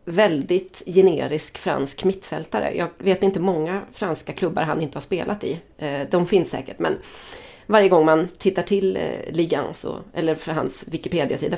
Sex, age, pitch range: female, 30-49, 155-195 Hz